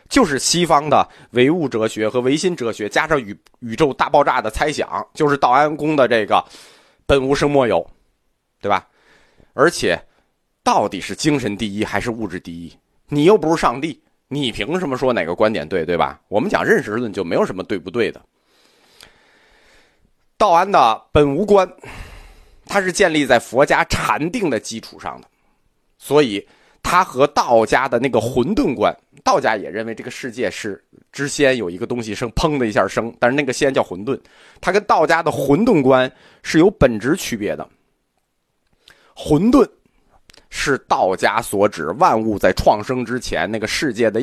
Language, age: Chinese, 30-49